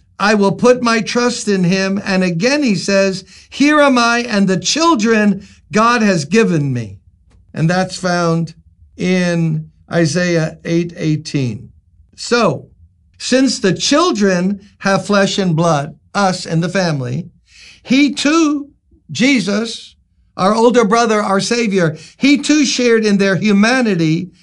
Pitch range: 170-230 Hz